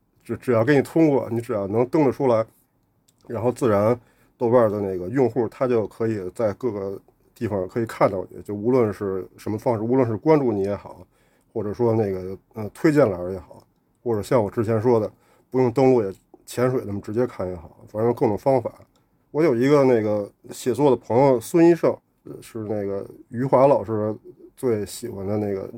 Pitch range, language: 100-125 Hz, Chinese